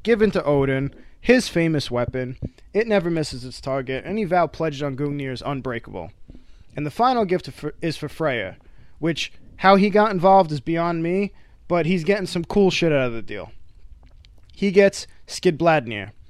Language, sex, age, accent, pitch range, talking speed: English, male, 20-39, American, 130-180 Hz, 170 wpm